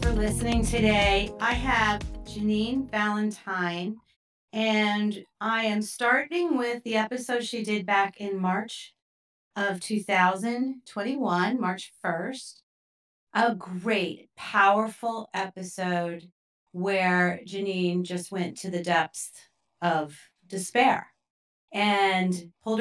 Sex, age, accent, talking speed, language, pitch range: female, 40-59, American, 100 wpm, English, 180-225 Hz